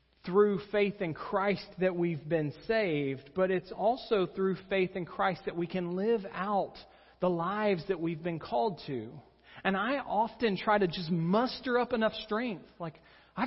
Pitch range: 135-215 Hz